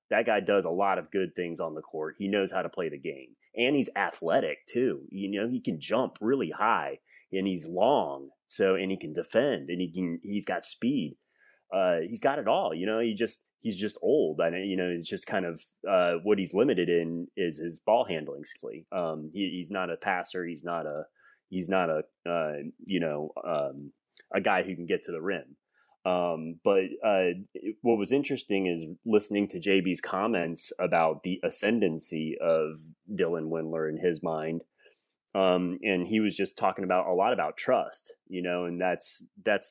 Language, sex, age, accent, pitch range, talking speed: English, male, 30-49, American, 85-115 Hz, 195 wpm